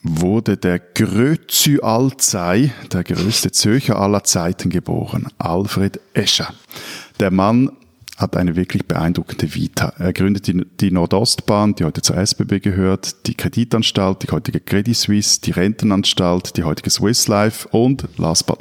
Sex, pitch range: male, 90-115 Hz